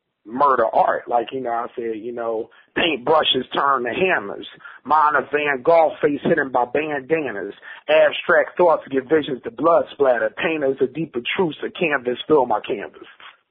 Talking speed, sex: 165 wpm, male